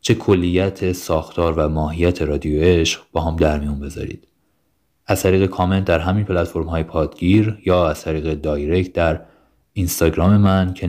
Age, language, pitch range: 30-49, Persian, 80-95 Hz